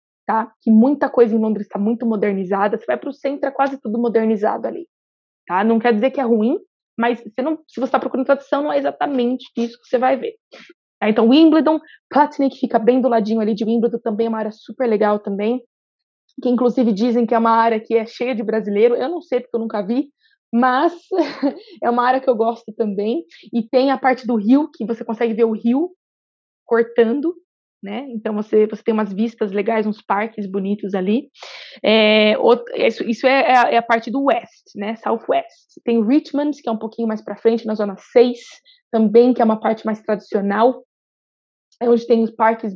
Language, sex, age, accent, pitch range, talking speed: Portuguese, female, 20-39, Brazilian, 225-270 Hz, 200 wpm